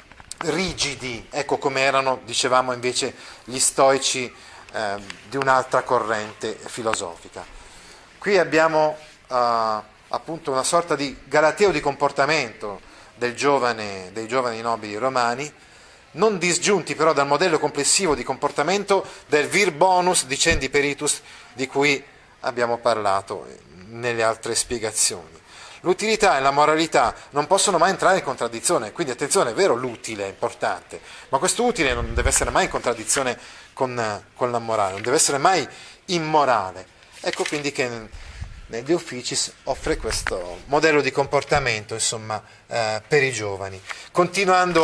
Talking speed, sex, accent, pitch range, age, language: 130 wpm, male, native, 120-160 Hz, 30-49, Italian